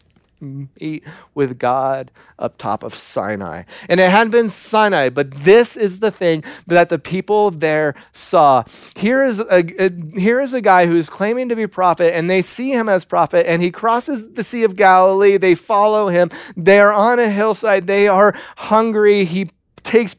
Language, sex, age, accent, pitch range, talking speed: English, male, 30-49, American, 165-210 Hz, 175 wpm